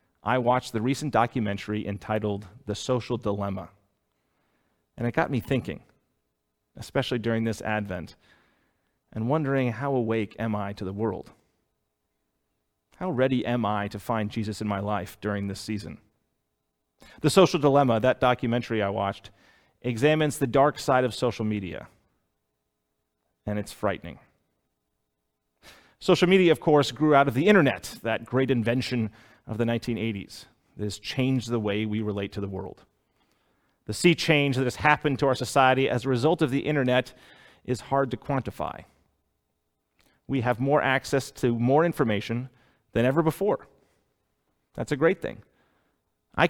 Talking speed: 150 wpm